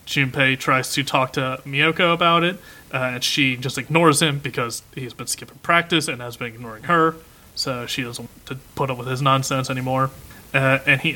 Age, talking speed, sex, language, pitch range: 30-49, 205 wpm, male, English, 125-155 Hz